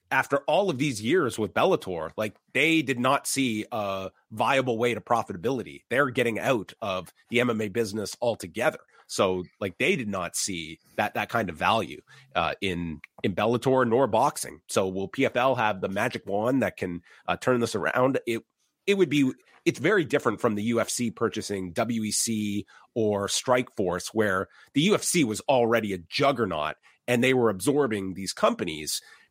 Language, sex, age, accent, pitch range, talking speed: English, male, 30-49, American, 105-135 Hz, 170 wpm